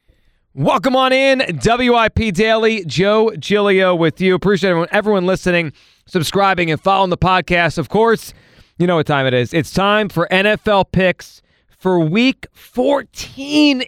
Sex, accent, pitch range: male, American, 155-195 Hz